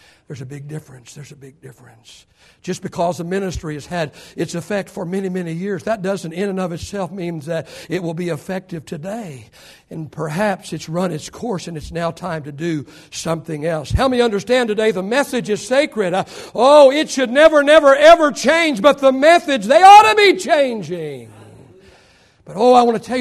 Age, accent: 60-79, American